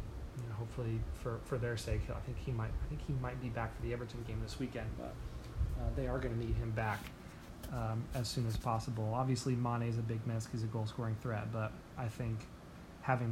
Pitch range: 115-125 Hz